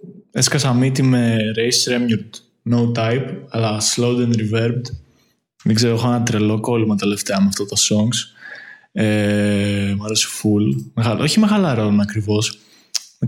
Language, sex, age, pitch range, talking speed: Greek, male, 20-39, 110-140 Hz, 140 wpm